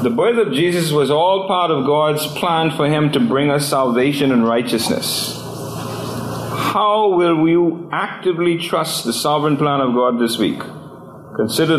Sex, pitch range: male, 125-170 Hz